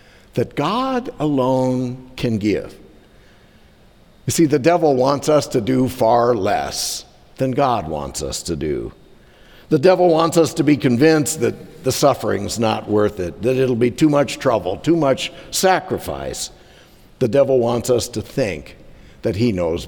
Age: 60-79